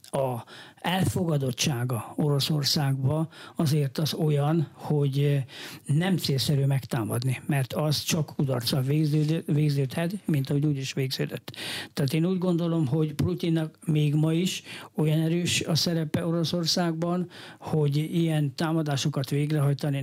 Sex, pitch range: male, 140-165 Hz